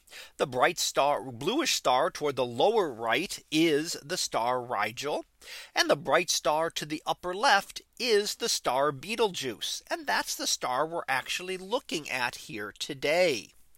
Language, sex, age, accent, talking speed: English, male, 40-59, American, 150 wpm